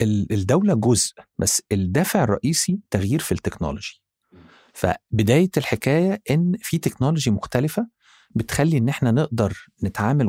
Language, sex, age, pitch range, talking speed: Arabic, male, 50-69, 105-155 Hz, 110 wpm